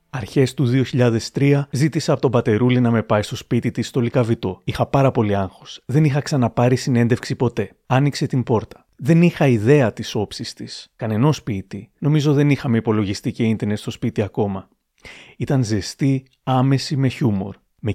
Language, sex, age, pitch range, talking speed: Greek, male, 30-49, 110-135 Hz, 165 wpm